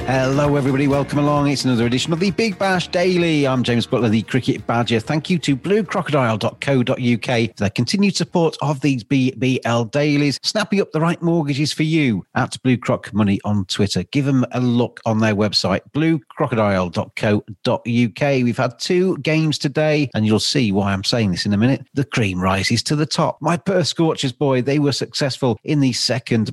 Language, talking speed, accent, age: English, 185 wpm, British, 40-59